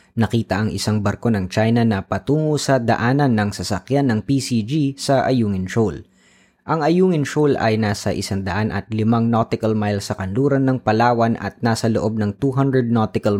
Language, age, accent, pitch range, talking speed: Filipino, 20-39, native, 105-135 Hz, 170 wpm